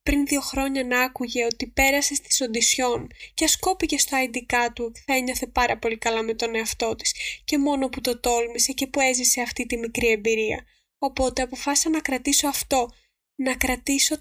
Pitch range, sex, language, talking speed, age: 235-280 Hz, female, Greek, 180 wpm, 20-39